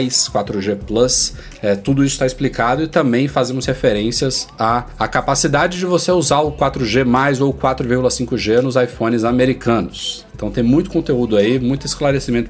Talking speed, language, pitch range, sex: 150 wpm, Portuguese, 120-145 Hz, male